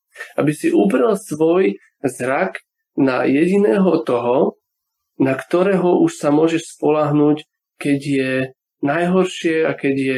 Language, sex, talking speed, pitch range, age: Slovak, male, 120 wpm, 135-180 Hz, 40-59